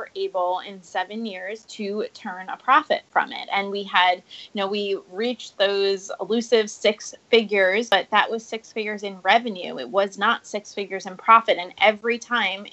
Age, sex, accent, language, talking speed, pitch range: 20-39, female, American, English, 180 wpm, 195-240 Hz